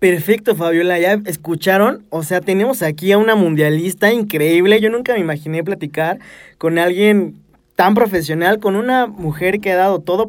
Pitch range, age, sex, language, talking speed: 170-225 Hz, 20-39, male, Spanish, 165 wpm